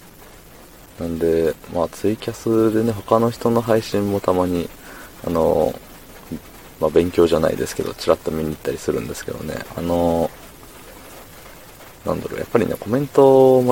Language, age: Japanese, 20-39